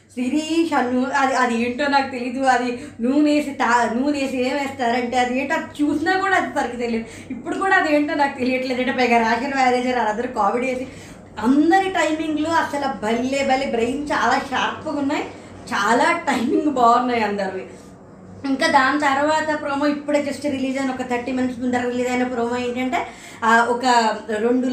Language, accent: Telugu, native